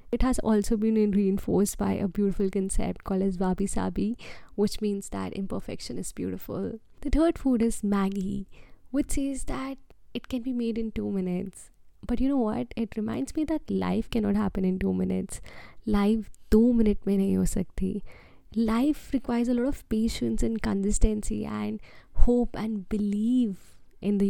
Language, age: English, 20-39